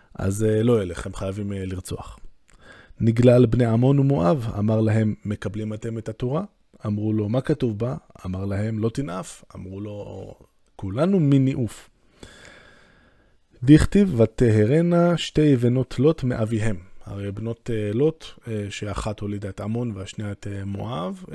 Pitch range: 105-130 Hz